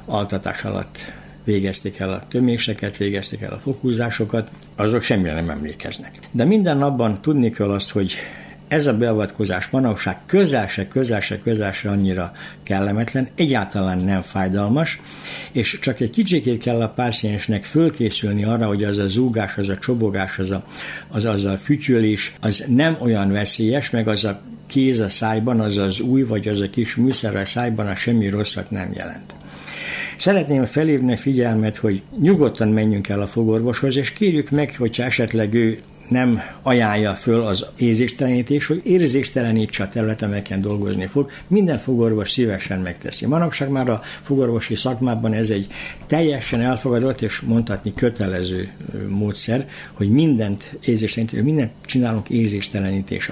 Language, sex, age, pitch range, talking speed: Hungarian, male, 60-79, 100-125 Hz, 150 wpm